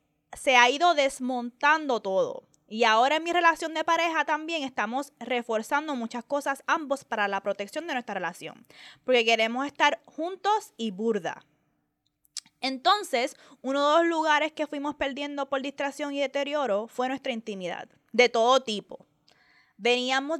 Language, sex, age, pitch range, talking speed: Spanish, female, 20-39, 225-290 Hz, 145 wpm